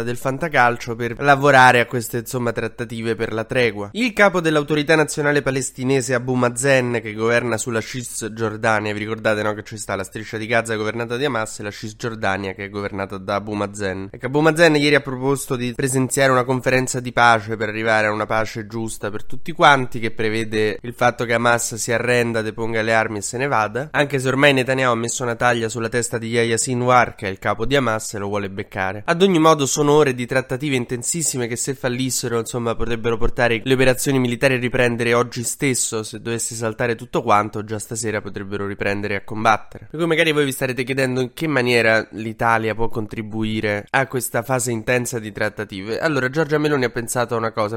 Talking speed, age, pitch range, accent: 205 wpm, 20-39, 110-130 Hz, native